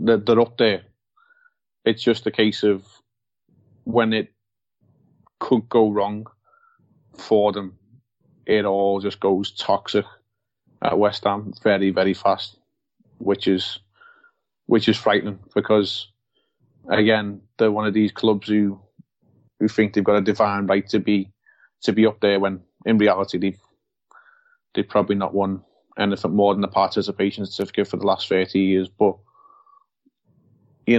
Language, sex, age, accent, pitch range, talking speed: English, male, 30-49, British, 100-115 Hz, 140 wpm